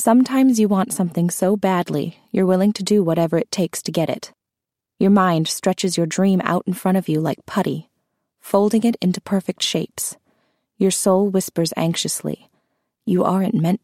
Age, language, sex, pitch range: 20-39, English, female, 175-200 Hz